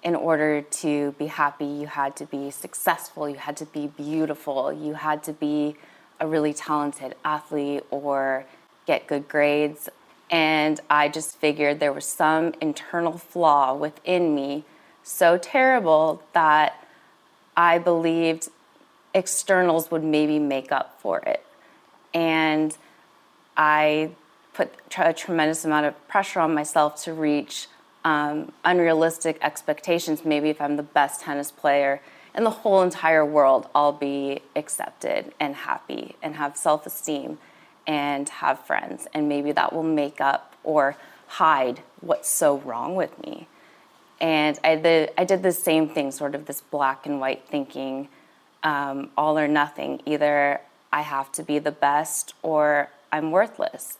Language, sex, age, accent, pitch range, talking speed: English, female, 20-39, American, 145-160 Hz, 145 wpm